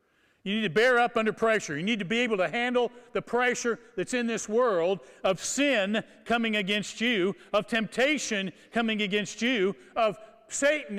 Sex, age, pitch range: male, 50-69, 175-235 Hz